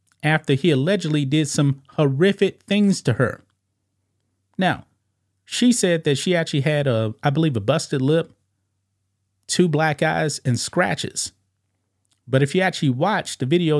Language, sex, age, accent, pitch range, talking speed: English, male, 30-49, American, 100-160 Hz, 150 wpm